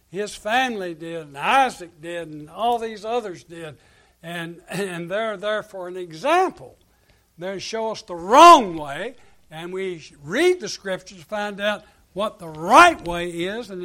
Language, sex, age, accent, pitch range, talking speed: English, male, 60-79, American, 175-215 Hz, 165 wpm